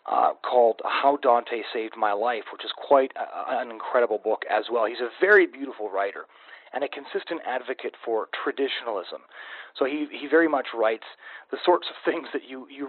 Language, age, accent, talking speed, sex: English, 30-49, American, 185 wpm, male